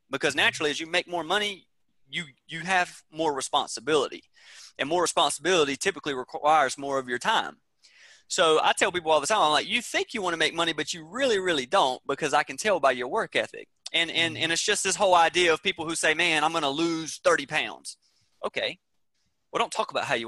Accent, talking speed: American, 220 wpm